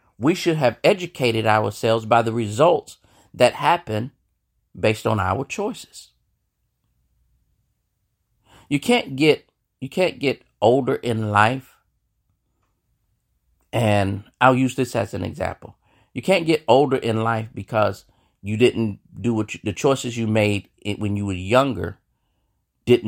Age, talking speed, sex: 40-59, 130 wpm, male